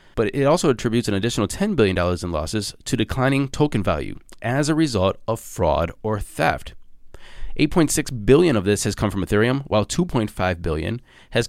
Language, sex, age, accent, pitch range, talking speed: English, male, 20-39, American, 95-130 Hz, 180 wpm